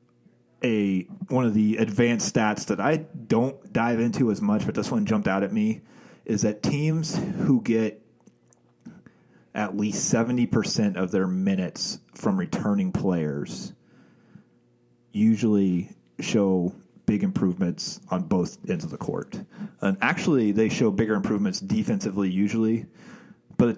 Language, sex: English, male